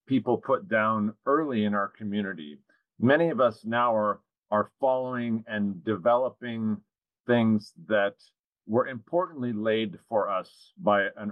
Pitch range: 105-125 Hz